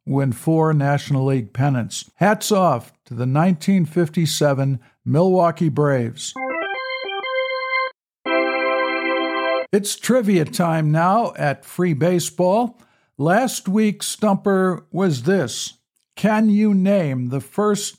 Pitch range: 150-195 Hz